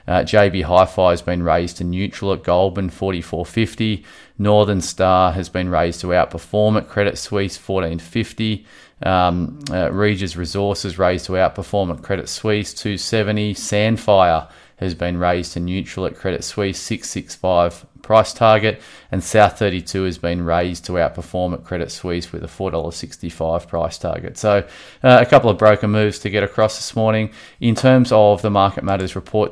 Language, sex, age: English, male, 20-39